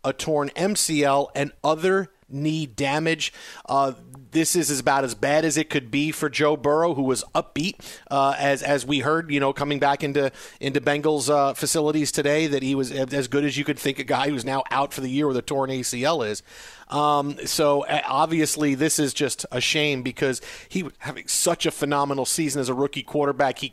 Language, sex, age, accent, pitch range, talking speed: English, male, 40-59, American, 140-155 Hz, 205 wpm